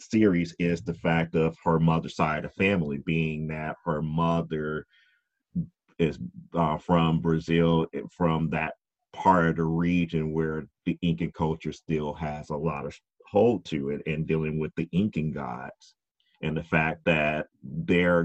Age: 30-49